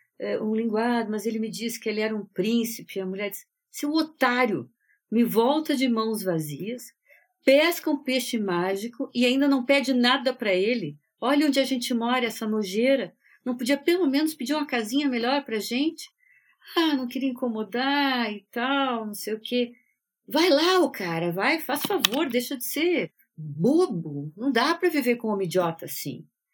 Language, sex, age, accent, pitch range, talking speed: Portuguese, female, 50-69, Brazilian, 190-270 Hz, 180 wpm